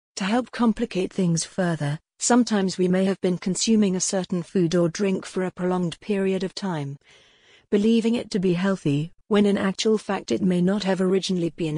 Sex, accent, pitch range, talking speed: female, British, 170-205 Hz, 190 wpm